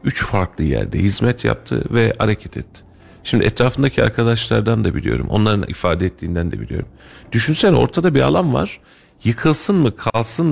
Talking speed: 150 wpm